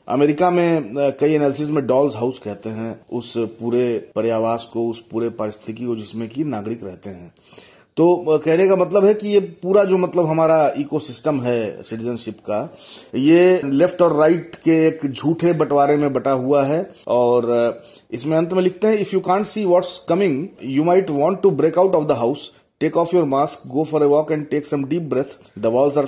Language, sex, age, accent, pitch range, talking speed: Hindi, male, 30-49, native, 120-160 Hz, 200 wpm